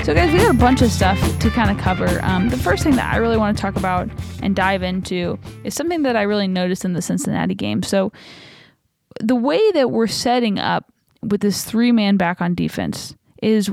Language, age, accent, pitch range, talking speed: English, 20-39, American, 190-235 Hz, 215 wpm